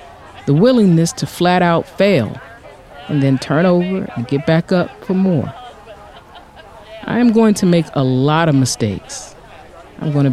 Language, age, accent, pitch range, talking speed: English, 40-59, American, 130-180 Hz, 155 wpm